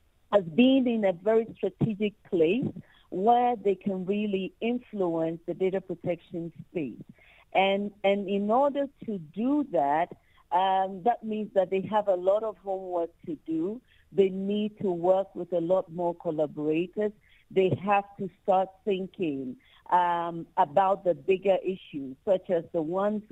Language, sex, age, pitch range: English, female, 50-69, 175-205 Hz